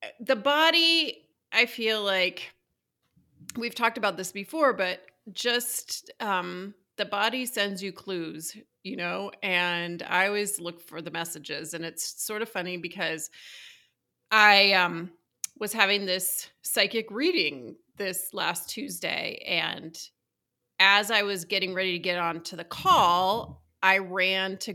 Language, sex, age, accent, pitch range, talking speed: English, female, 30-49, American, 175-210 Hz, 140 wpm